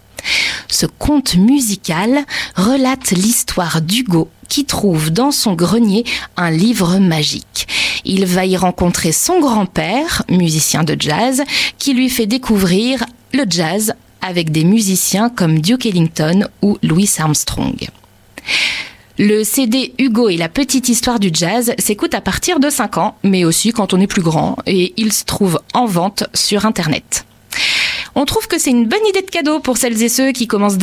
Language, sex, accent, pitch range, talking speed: French, female, French, 185-255 Hz, 160 wpm